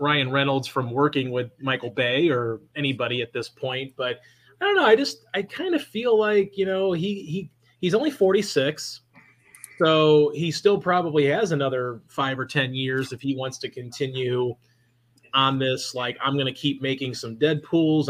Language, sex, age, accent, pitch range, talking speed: English, male, 30-49, American, 130-160 Hz, 180 wpm